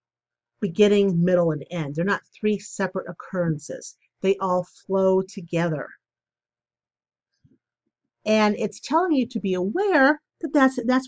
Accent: American